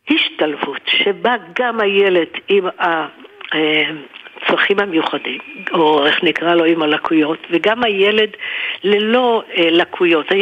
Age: 60-79